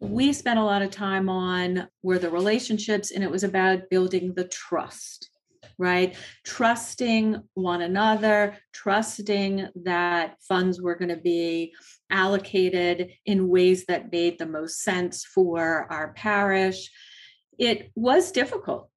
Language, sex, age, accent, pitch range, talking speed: English, female, 40-59, American, 170-215 Hz, 135 wpm